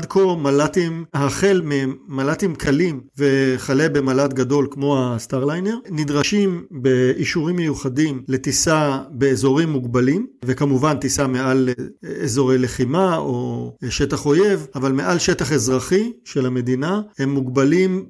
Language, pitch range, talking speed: Hebrew, 130-160 Hz, 110 wpm